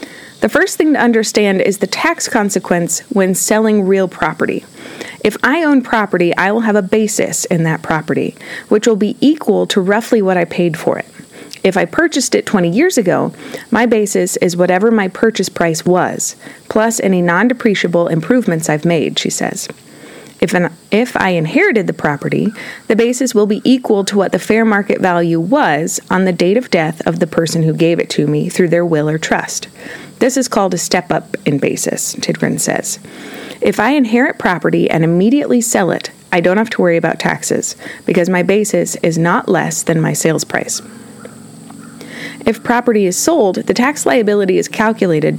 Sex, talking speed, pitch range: female, 180 wpm, 175-235 Hz